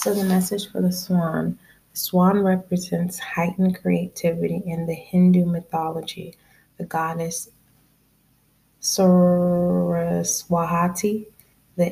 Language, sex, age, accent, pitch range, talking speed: English, female, 20-39, American, 155-180 Hz, 95 wpm